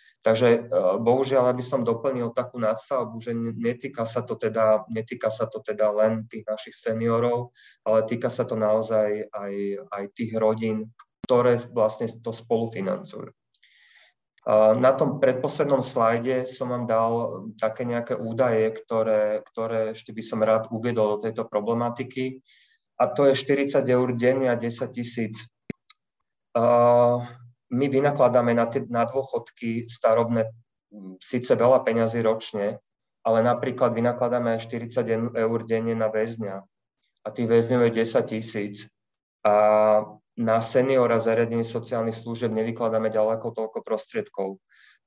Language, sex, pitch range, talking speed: Slovak, male, 110-120 Hz, 130 wpm